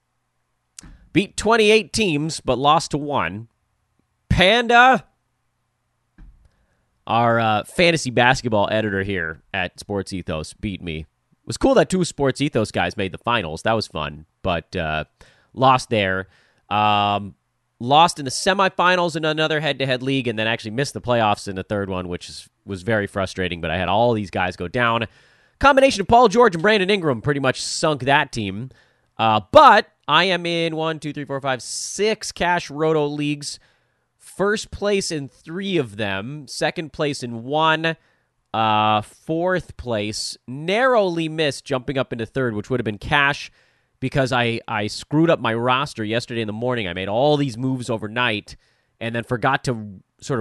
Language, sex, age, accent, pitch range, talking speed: English, male, 30-49, American, 105-150 Hz, 170 wpm